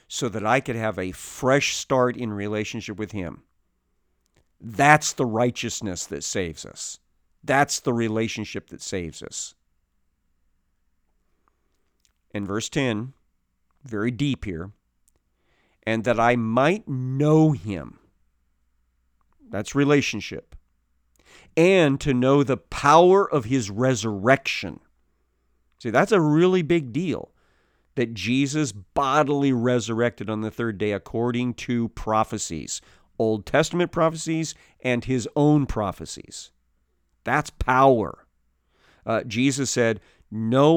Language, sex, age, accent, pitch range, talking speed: English, male, 50-69, American, 85-135 Hz, 110 wpm